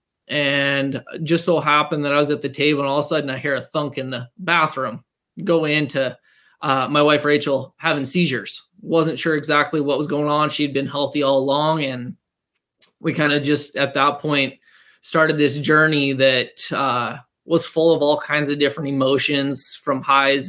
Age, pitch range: 20-39, 135-155 Hz